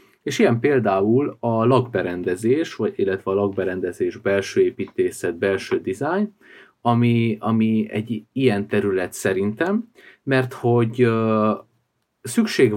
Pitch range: 100-125 Hz